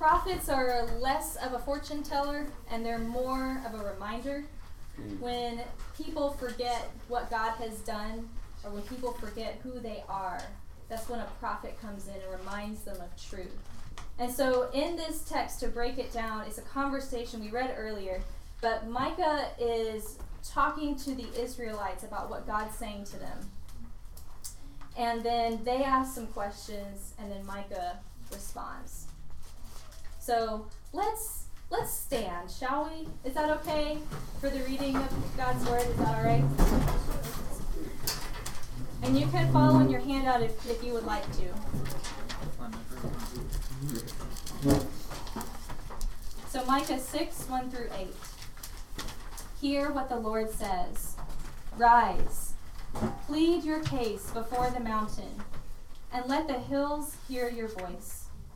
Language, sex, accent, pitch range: English, female, American, 200-265 Hz